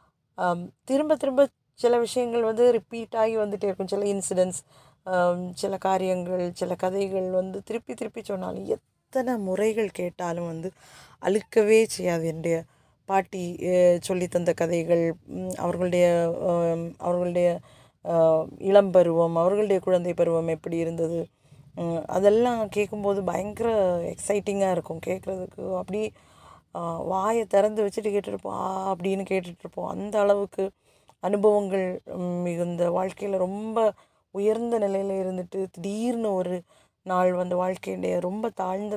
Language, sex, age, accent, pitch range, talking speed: Tamil, female, 20-39, native, 170-200 Hz, 100 wpm